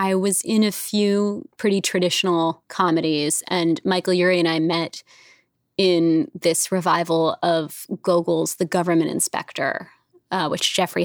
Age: 20-39